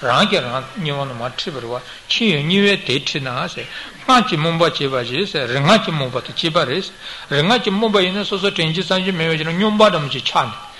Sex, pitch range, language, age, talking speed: male, 145-195 Hz, Italian, 60-79, 130 wpm